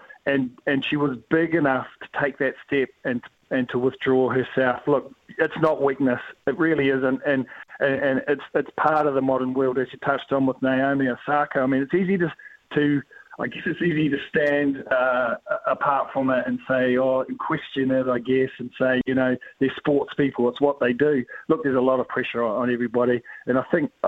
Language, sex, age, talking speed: English, male, 40-59, 215 wpm